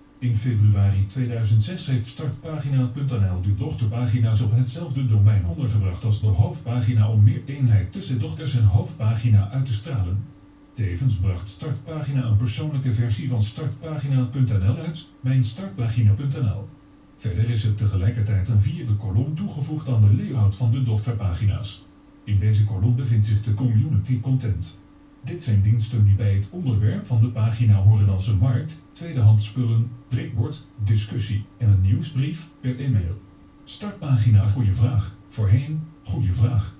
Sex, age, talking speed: male, 40-59, 135 wpm